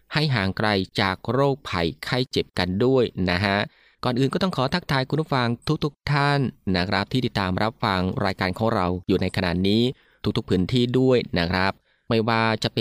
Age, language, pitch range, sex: 20-39, Thai, 100-130 Hz, male